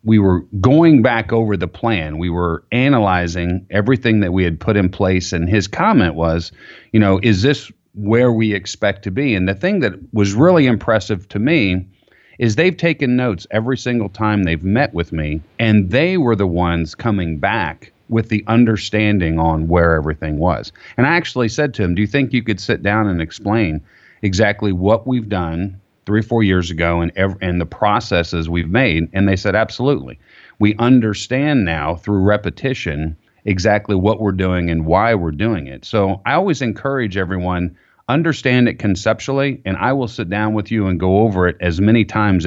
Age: 40-59